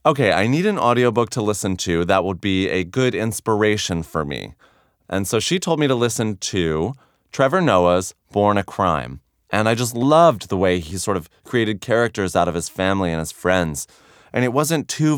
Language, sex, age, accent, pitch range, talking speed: English, male, 30-49, American, 90-125 Hz, 200 wpm